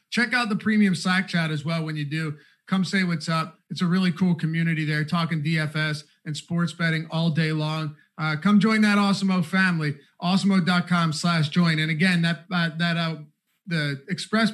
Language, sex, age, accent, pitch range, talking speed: English, male, 30-49, American, 155-190 Hz, 190 wpm